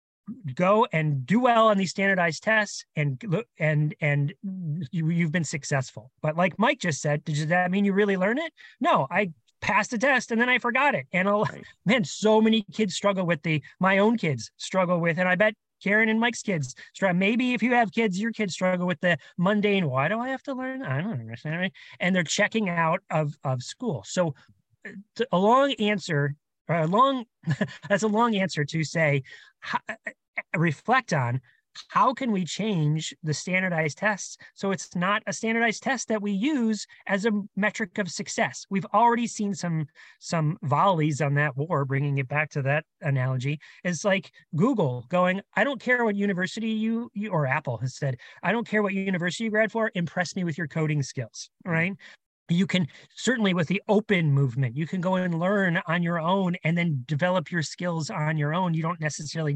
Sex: male